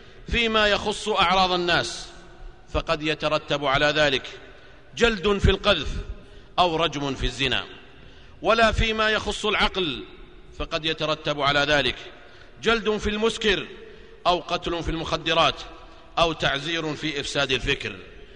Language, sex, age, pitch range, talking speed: Arabic, male, 50-69, 145-185 Hz, 115 wpm